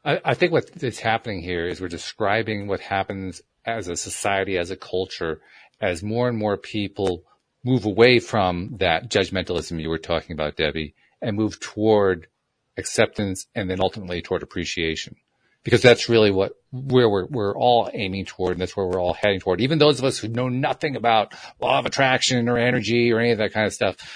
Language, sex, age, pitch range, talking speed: English, male, 40-59, 100-150 Hz, 195 wpm